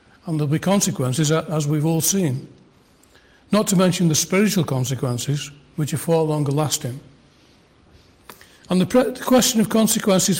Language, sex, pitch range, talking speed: English, male, 145-185 Hz, 150 wpm